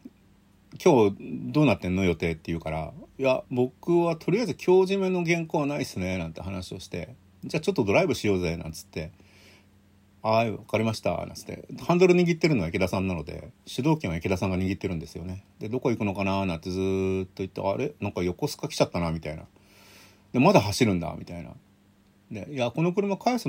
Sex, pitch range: male, 95-150 Hz